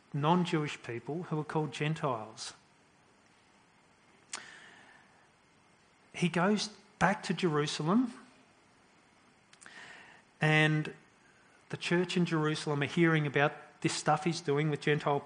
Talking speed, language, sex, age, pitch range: 100 wpm, English, male, 40-59, 150-180 Hz